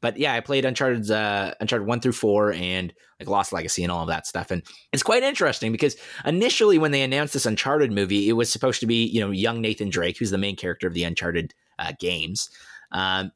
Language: English